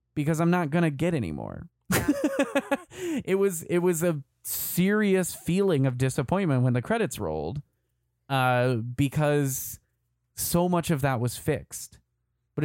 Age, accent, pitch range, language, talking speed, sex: 20-39, American, 120-165 Hz, English, 140 wpm, male